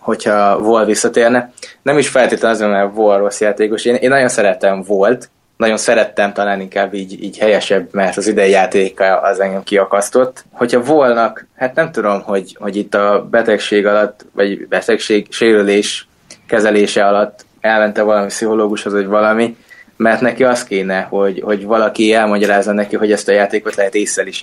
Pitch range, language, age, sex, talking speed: 105-120 Hz, Hungarian, 20-39, male, 165 wpm